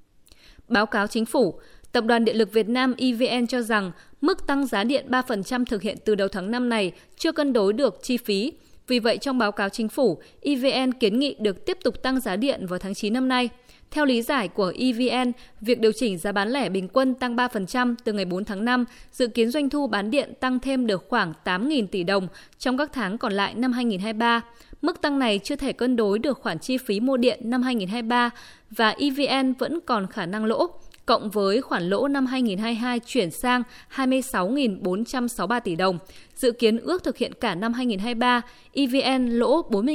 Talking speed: 205 wpm